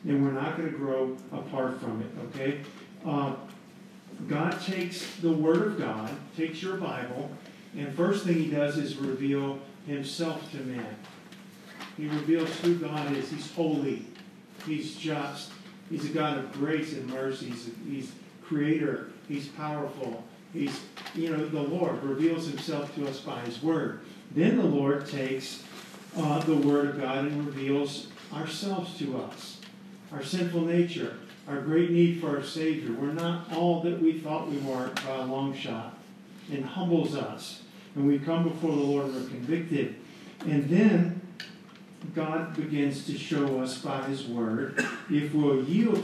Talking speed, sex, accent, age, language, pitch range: 160 wpm, male, American, 50-69, English, 140-175 Hz